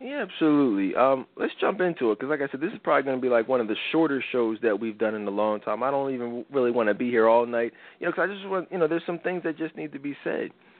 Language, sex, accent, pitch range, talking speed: English, male, American, 115-155 Hz, 315 wpm